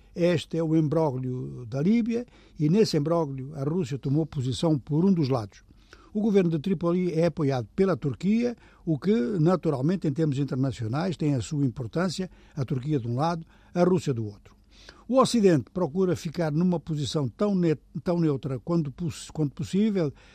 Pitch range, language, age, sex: 140-180 Hz, Portuguese, 60-79, male